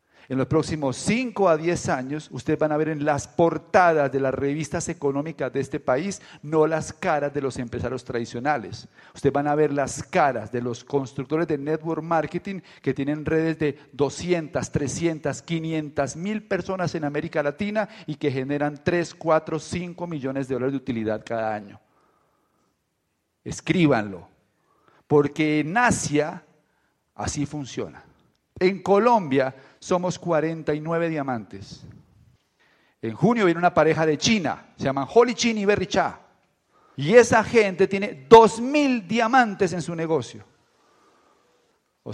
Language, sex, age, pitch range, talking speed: Spanish, male, 50-69, 135-175 Hz, 145 wpm